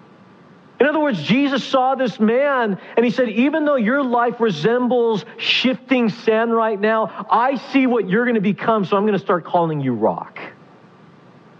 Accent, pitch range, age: American, 170-225 Hz, 50-69